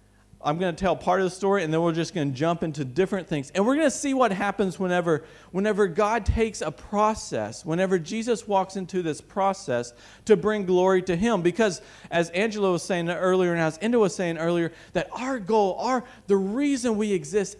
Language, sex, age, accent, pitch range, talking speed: English, male, 50-69, American, 135-220 Hz, 210 wpm